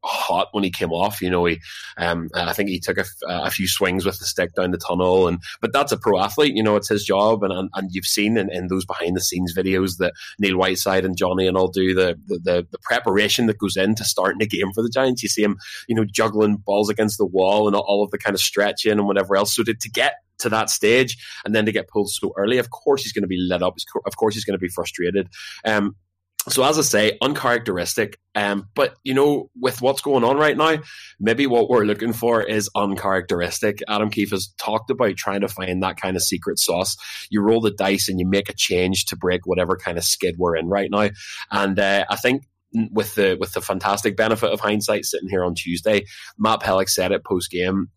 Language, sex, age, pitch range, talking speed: English, male, 20-39, 90-110 Hz, 245 wpm